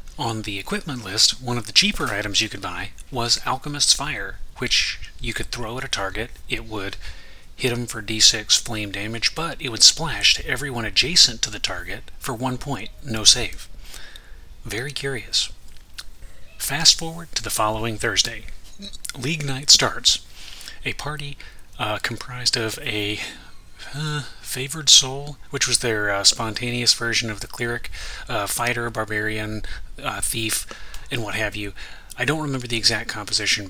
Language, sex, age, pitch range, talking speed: English, male, 30-49, 100-130 Hz, 160 wpm